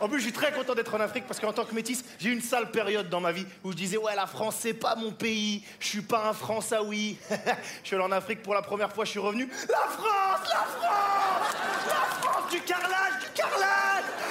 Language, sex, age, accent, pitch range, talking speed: French, male, 30-49, French, 190-275 Hz, 265 wpm